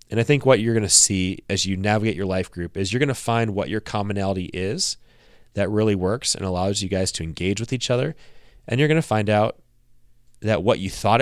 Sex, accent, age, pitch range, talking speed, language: male, American, 30-49, 95-115 Hz, 240 wpm, English